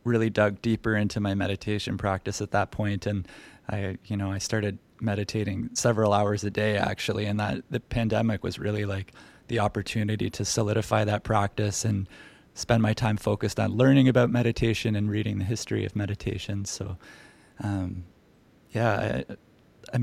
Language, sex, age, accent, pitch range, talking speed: English, male, 20-39, American, 100-115 Hz, 165 wpm